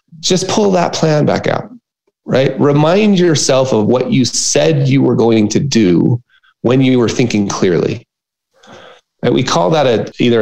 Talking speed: 165 wpm